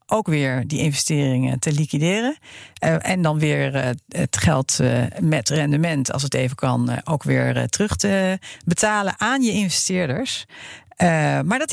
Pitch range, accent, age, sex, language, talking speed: 140-195 Hz, Dutch, 50-69, female, English, 145 wpm